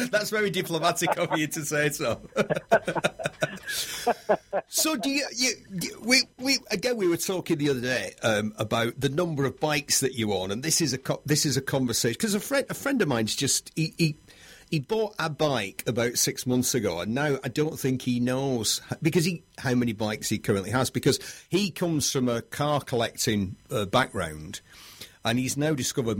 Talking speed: 190 wpm